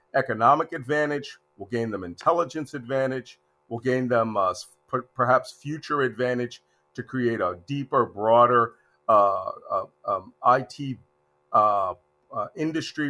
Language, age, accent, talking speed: English, 50-69, American, 120 wpm